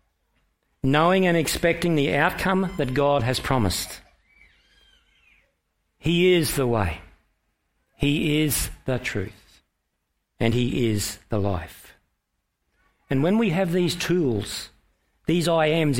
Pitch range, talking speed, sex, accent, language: 90-150 Hz, 115 wpm, male, Australian, English